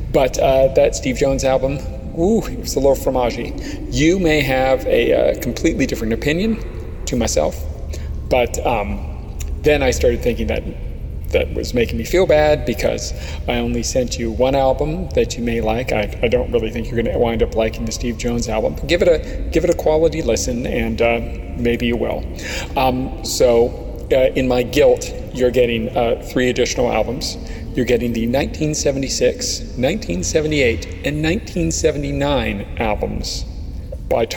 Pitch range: 110-140 Hz